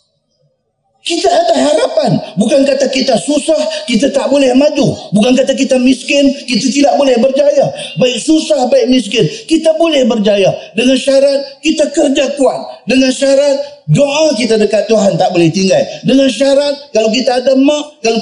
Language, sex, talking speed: Malay, male, 155 wpm